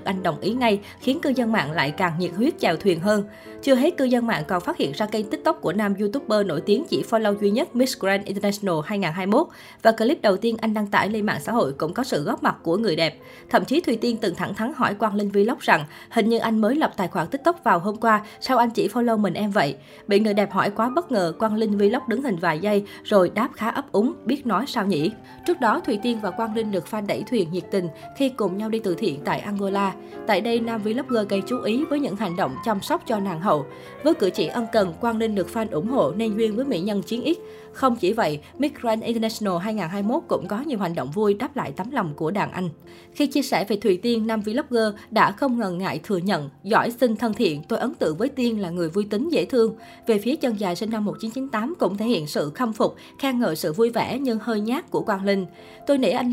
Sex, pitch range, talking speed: female, 200-245 Hz, 260 wpm